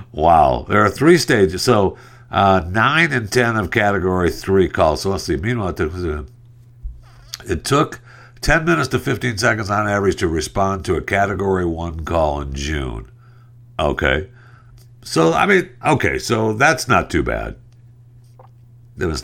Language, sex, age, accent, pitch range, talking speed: English, male, 60-79, American, 80-120 Hz, 150 wpm